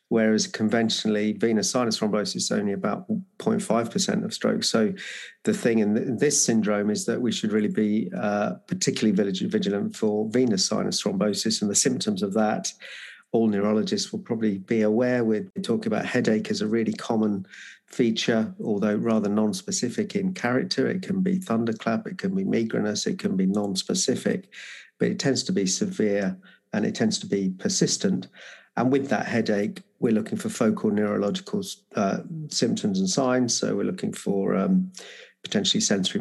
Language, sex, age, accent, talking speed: English, male, 50-69, British, 165 wpm